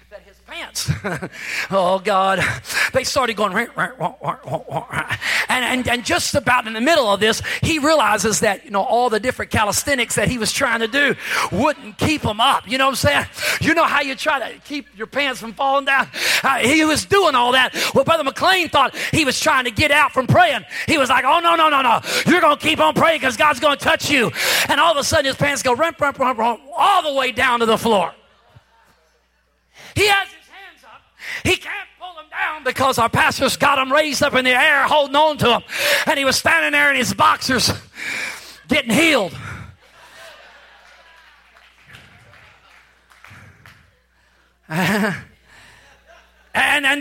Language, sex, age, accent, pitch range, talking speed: English, male, 30-49, American, 230-305 Hz, 195 wpm